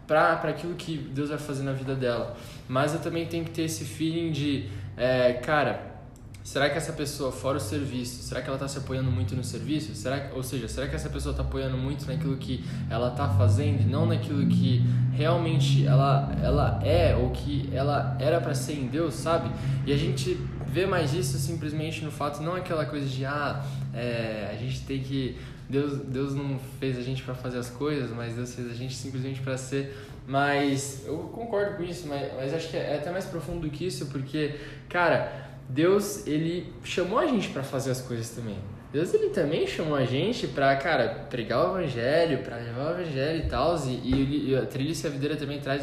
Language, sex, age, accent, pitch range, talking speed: Portuguese, male, 10-29, Brazilian, 125-150 Hz, 205 wpm